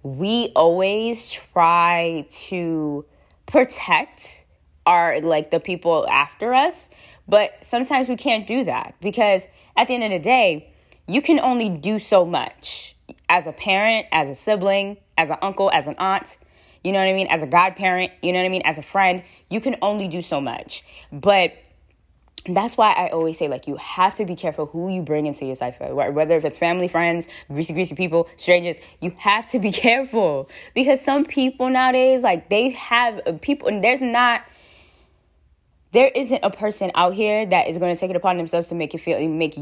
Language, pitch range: English, 160-215 Hz